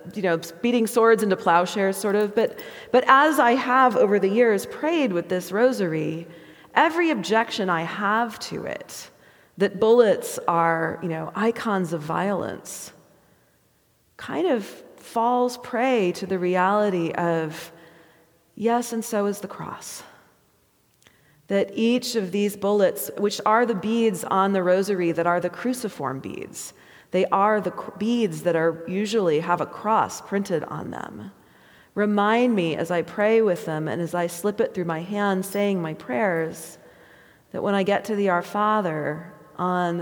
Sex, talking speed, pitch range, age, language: female, 155 wpm, 170-220 Hz, 30-49, English